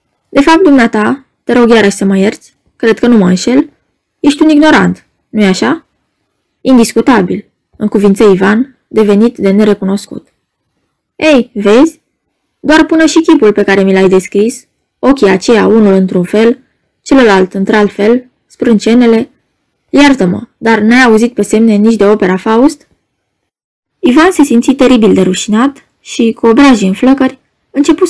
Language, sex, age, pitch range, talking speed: Romanian, female, 20-39, 205-275 Hz, 145 wpm